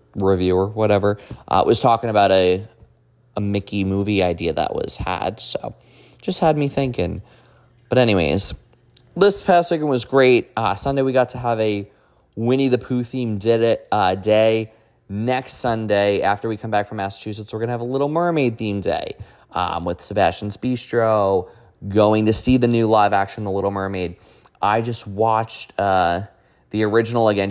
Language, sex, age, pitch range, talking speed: English, male, 20-39, 100-130 Hz, 160 wpm